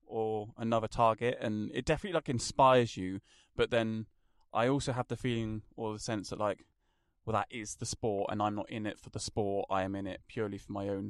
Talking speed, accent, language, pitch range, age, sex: 225 wpm, British, English, 95-115 Hz, 20-39, male